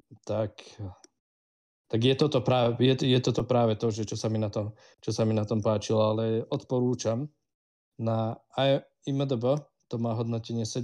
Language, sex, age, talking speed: Slovak, male, 20-39, 110 wpm